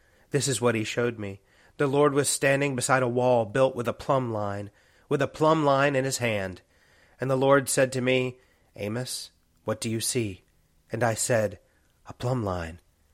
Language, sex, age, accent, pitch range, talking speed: English, male, 30-49, American, 95-125 Hz, 190 wpm